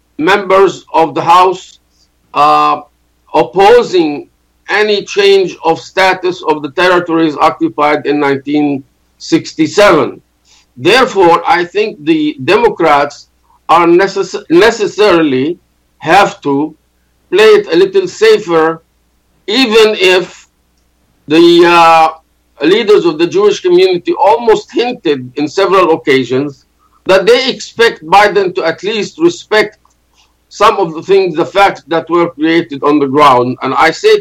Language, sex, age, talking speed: Arabic, male, 50-69, 120 wpm